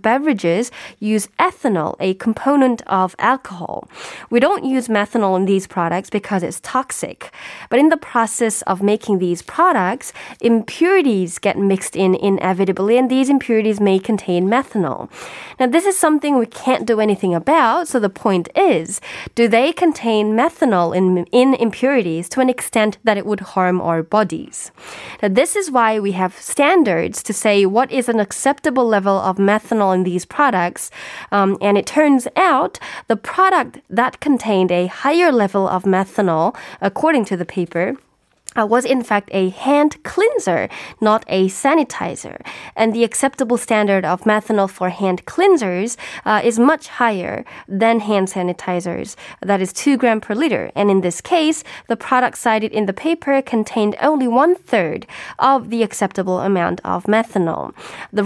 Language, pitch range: Korean, 195-260 Hz